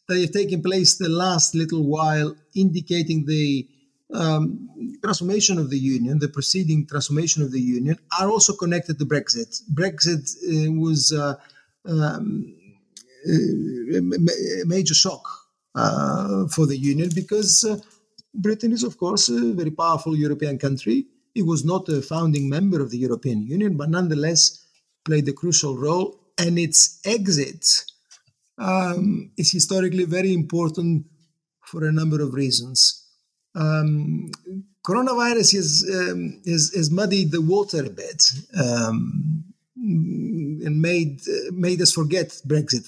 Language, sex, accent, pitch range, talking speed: English, male, Italian, 150-185 Hz, 135 wpm